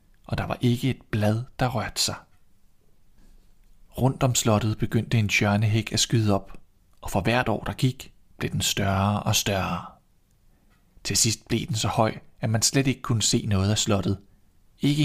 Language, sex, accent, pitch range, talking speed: Danish, male, native, 100-115 Hz, 180 wpm